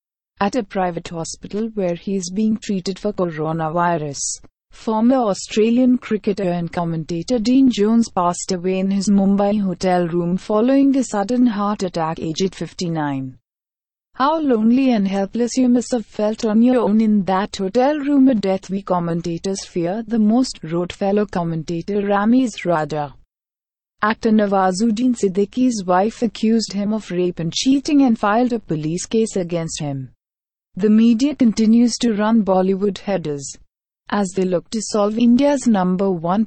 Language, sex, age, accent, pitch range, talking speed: English, female, 30-49, Indian, 180-230 Hz, 150 wpm